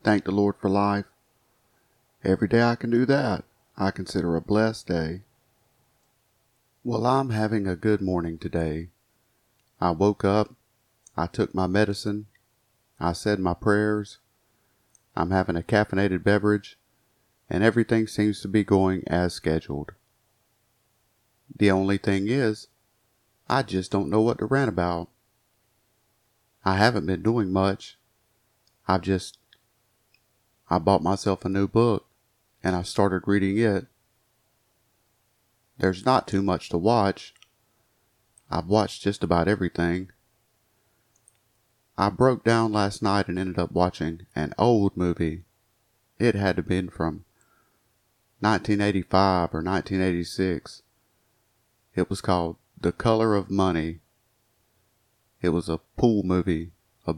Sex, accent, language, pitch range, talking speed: male, American, English, 95-115 Hz, 130 wpm